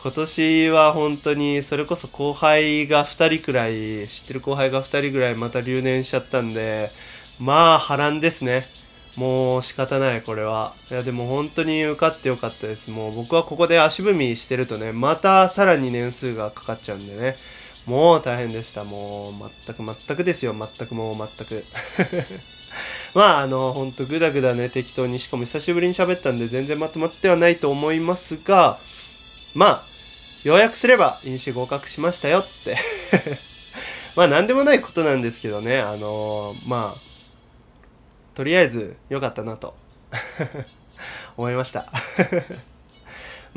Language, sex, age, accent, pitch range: Japanese, male, 20-39, native, 115-150 Hz